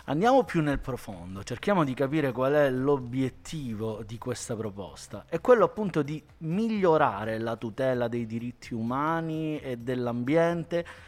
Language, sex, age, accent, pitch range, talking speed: Italian, male, 30-49, native, 120-165 Hz, 135 wpm